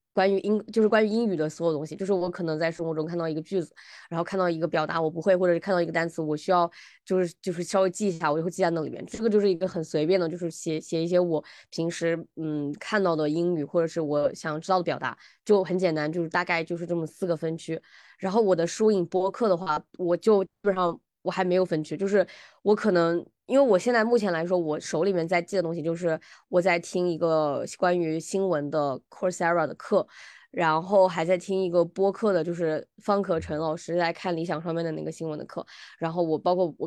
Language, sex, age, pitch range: Chinese, female, 20-39, 160-185 Hz